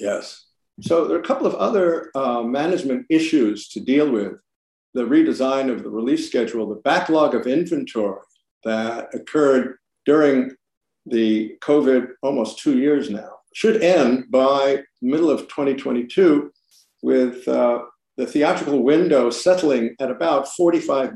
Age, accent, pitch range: 50-69, American, 125-155 Hz